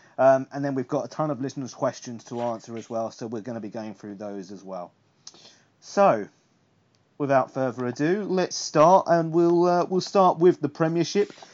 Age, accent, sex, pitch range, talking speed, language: 30-49, British, male, 125-155 Hz, 200 wpm, English